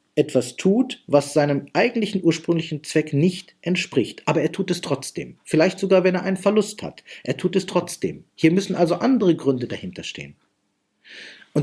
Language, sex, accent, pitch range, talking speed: German, male, German, 130-180 Hz, 170 wpm